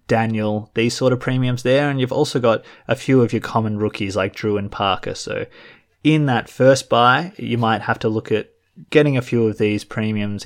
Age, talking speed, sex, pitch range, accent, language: 20-39, 210 wpm, male, 110-130 Hz, Australian, English